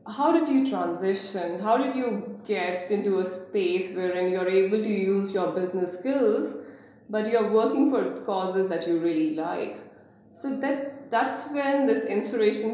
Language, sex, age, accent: English, female, 20-39, Indian